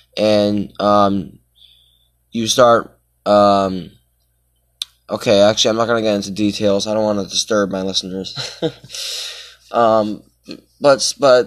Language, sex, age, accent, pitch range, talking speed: English, male, 20-39, American, 95-140 Hz, 125 wpm